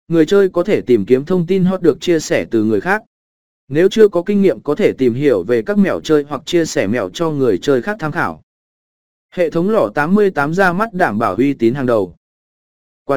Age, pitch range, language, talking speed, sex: 20-39, 135-185 Hz, Vietnamese, 235 wpm, male